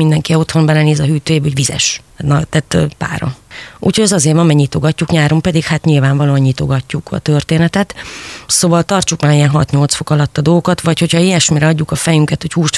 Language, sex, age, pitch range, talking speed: Hungarian, female, 30-49, 145-165 Hz, 185 wpm